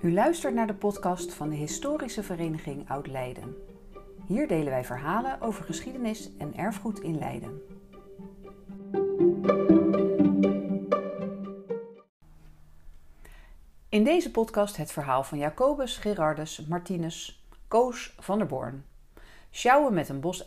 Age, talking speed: 40-59, 110 wpm